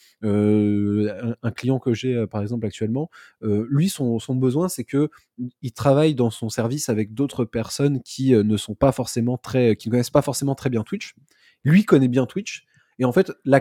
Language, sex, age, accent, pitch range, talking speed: French, male, 20-39, French, 115-150 Hz, 205 wpm